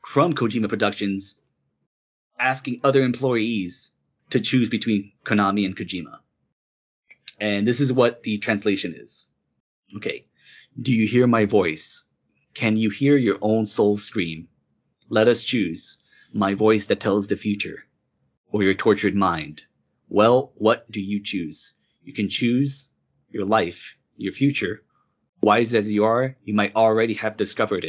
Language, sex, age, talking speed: English, male, 30-49, 140 wpm